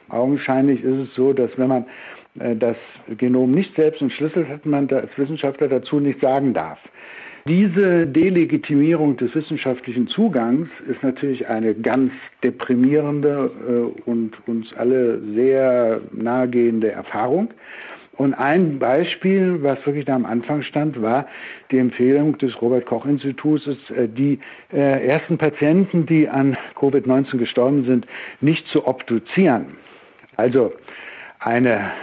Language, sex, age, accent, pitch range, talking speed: German, male, 60-79, German, 120-150 Hz, 125 wpm